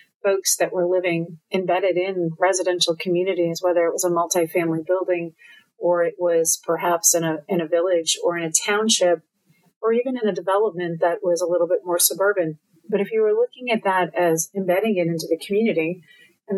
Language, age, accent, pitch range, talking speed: English, 40-59, American, 170-205 Hz, 190 wpm